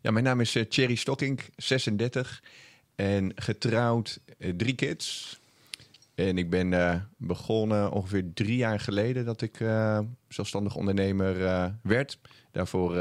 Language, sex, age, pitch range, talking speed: Dutch, male, 30-49, 95-115 Hz, 140 wpm